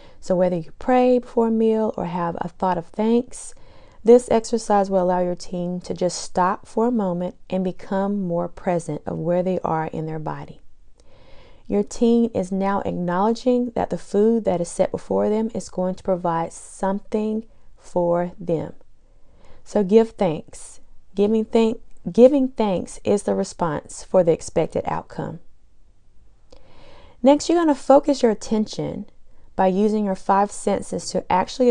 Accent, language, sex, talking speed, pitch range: American, English, female, 155 wpm, 180-230 Hz